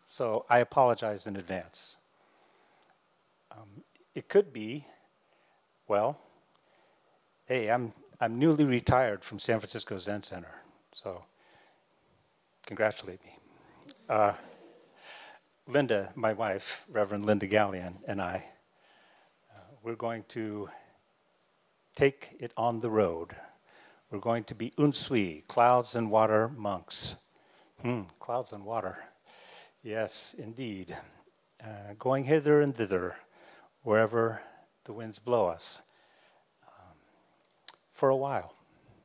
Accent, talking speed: American, 110 wpm